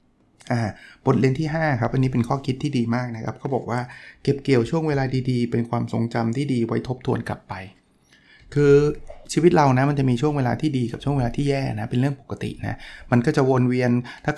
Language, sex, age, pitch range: Thai, male, 20-39, 120-145 Hz